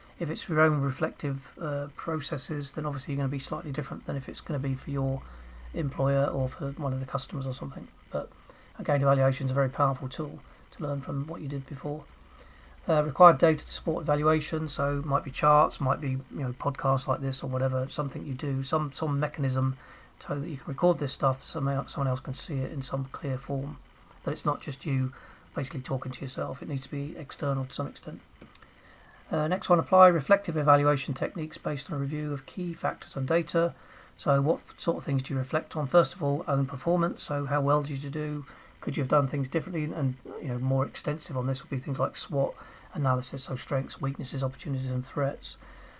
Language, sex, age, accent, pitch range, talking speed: English, male, 40-59, British, 135-155 Hz, 220 wpm